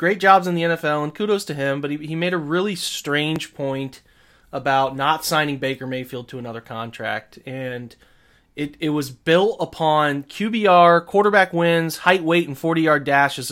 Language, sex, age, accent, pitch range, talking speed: English, male, 30-49, American, 130-185 Hz, 175 wpm